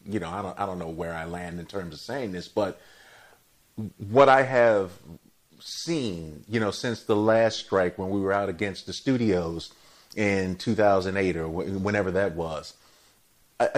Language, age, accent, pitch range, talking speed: English, 40-59, American, 90-110 Hz, 180 wpm